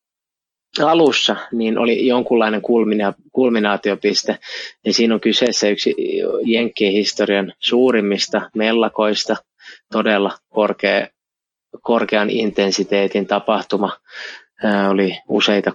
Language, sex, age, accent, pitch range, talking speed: Finnish, male, 20-39, native, 105-120 Hz, 70 wpm